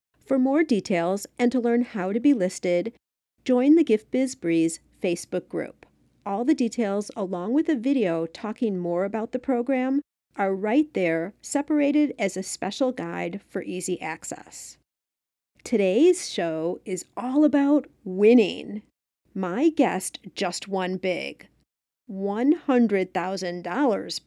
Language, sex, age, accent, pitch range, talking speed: English, female, 50-69, American, 185-265 Hz, 130 wpm